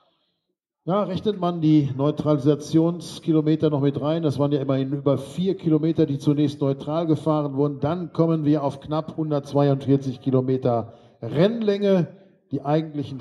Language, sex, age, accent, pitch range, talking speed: German, male, 50-69, German, 135-155 Hz, 135 wpm